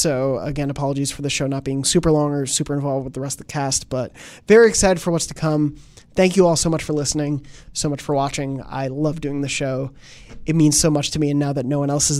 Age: 20-39